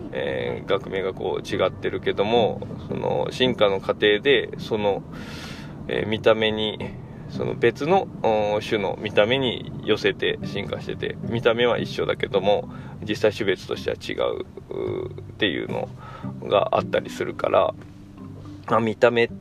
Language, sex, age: Japanese, male, 20-39